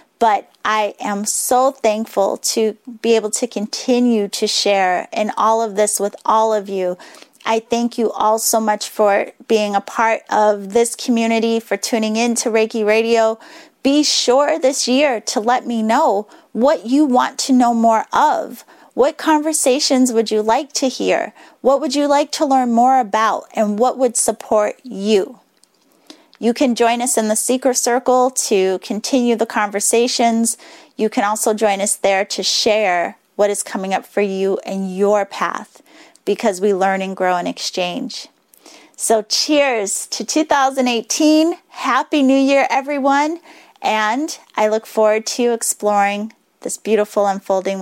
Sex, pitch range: female, 210-260 Hz